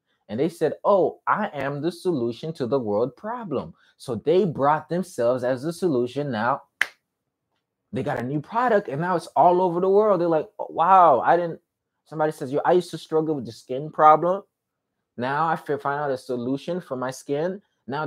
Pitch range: 130-180 Hz